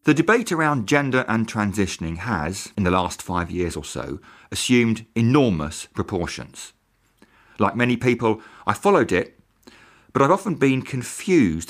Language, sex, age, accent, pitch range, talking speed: English, male, 40-59, British, 100-130 Hz, 145 wpm